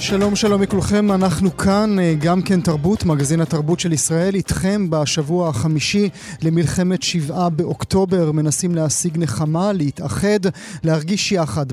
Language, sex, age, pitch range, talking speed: Hebrew, male, 30-49, 155-190 Hz, 125 wpm